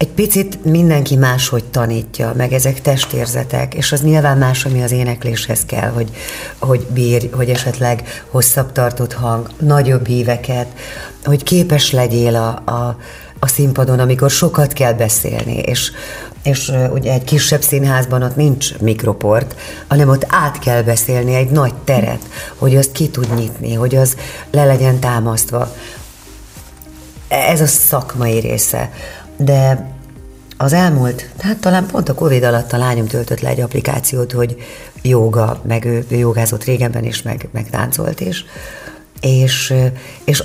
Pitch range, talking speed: 120-145 Hz, 140 wpm